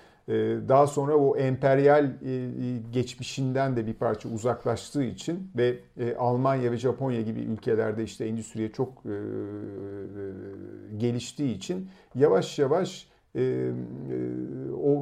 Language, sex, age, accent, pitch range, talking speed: Turkish, male, 50-69, native, 110-135 Hz, 95 wpm